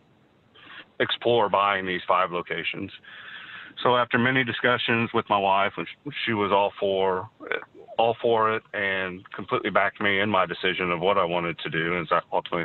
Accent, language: American, English